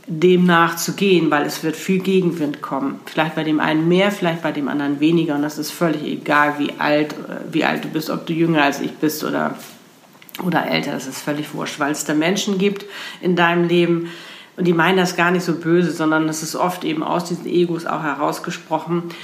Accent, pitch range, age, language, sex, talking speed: German, 150-175 Hz, 50-69, German, female, 210 wpm